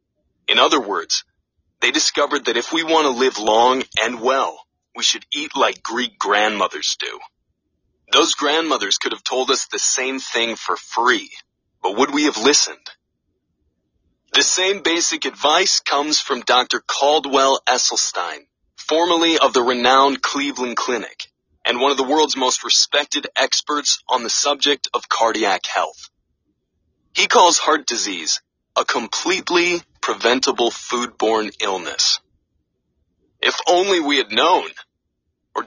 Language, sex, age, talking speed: English, male, 30-49, 135 wpm